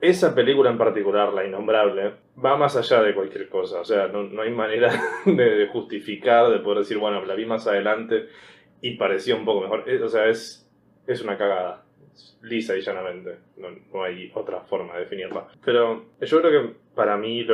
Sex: male